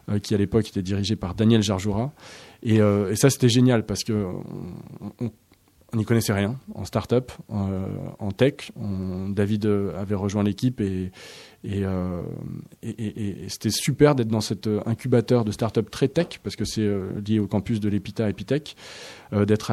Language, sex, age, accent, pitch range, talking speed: French, male, 20-39, French, 105-125 Hz, 175 wpm